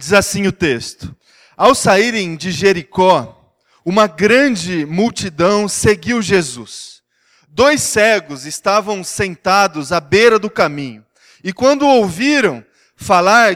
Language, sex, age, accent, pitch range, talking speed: Portuguese, male, 20-39, Brazilian, 180-240 Hz, 110 wpm